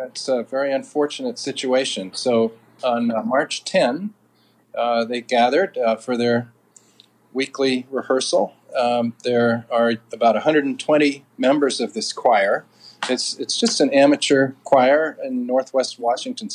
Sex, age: male, 40-59